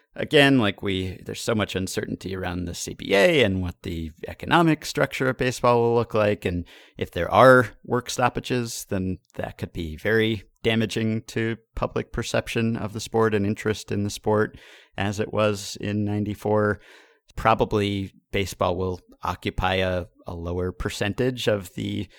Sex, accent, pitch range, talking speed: male, American, 90-115 Hz, 155 wpm